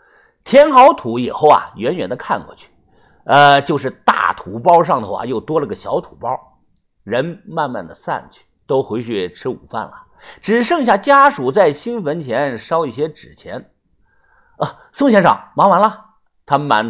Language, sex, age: Chinese, male, 50-69